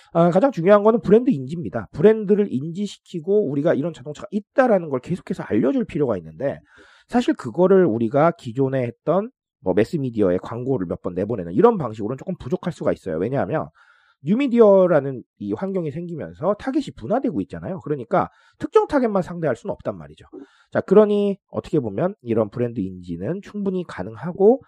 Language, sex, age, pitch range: Korean, male, 40-59, 135-210 Hz